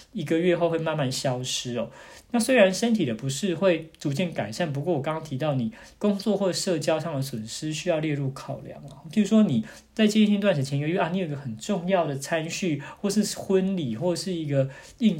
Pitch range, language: 135-185 Hz, Chinese